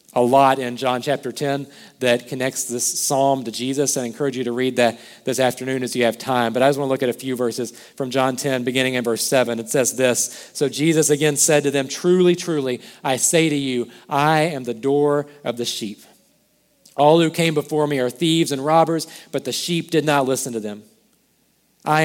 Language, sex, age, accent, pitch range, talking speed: English, male, 40-59, American, 120-145 Hz, 220 wpm